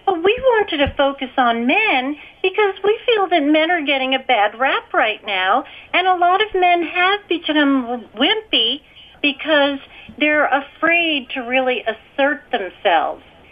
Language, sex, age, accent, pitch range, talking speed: English, female, 50-69, American, 245-355 Hz, 150 wpm